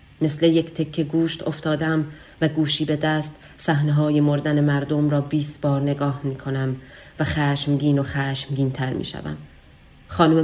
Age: 30-49